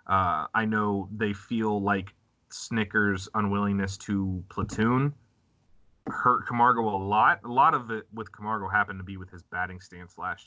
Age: 20-39